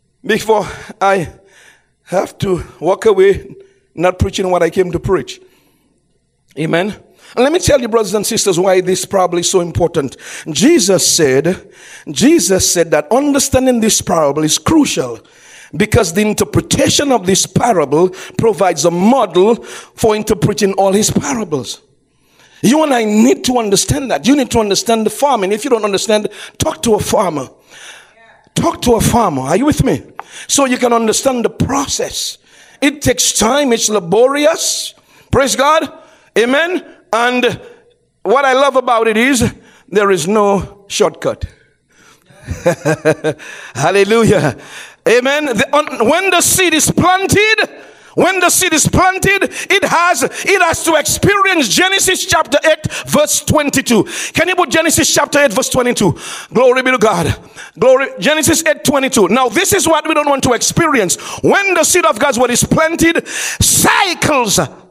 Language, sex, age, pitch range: English, male, 50-69, 205-325 Hz